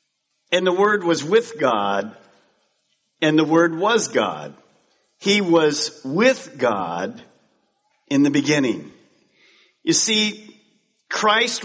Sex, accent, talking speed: male, American, 110 wpm